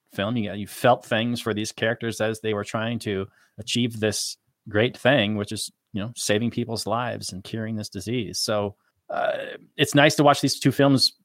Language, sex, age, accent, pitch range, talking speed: English, male, 30-49, American, 105-120 Hz, 195 wpm